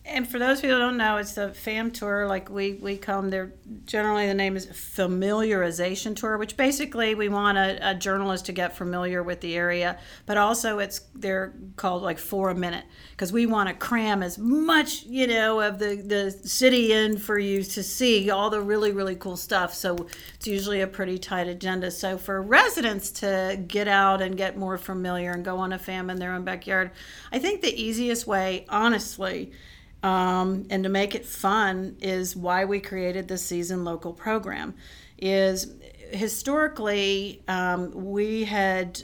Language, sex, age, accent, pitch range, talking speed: English, female, 50-69, American, 185-210 Hz, 180 wpm